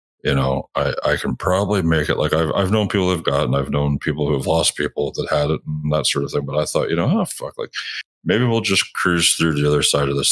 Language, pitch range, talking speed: English, 70-100 Hz, 280 wpm